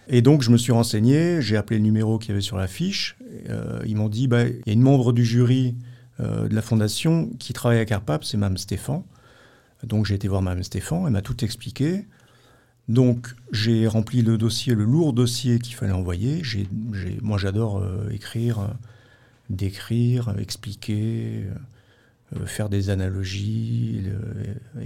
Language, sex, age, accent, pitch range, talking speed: French, male, 50-69, French, 105-125 Hz, 180 wpm